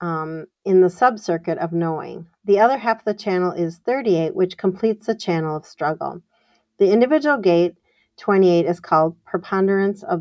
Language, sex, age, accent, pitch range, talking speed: English, female, 40-59, American, 170-200 Hz, 165 wpm